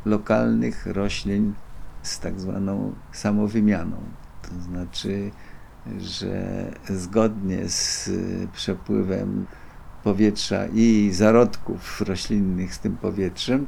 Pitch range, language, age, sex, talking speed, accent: 95-115 Hz, Polish, 50-69, male, 85 wpm, native